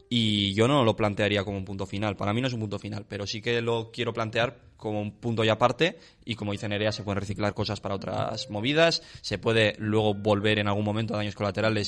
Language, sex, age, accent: Spanish, male, 20-39, Spanish